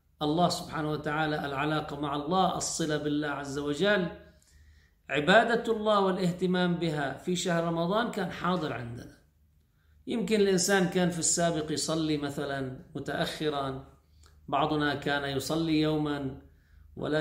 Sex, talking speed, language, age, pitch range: male, 115 wpm, Arabic, 50-69, 130-165 Hz